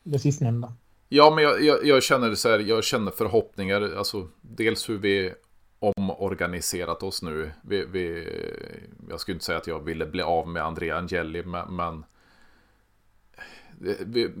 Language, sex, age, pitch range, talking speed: Swedish, male, 30-49, 80-95 Hz, 145 wpm